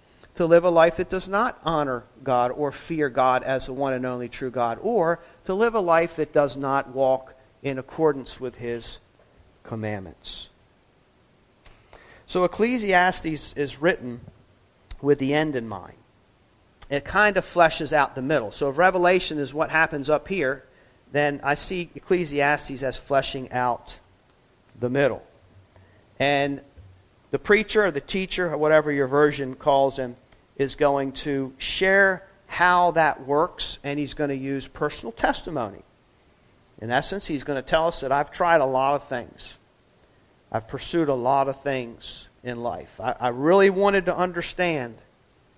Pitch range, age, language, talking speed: 125-165 Hz, 40-59, English, 160 wpm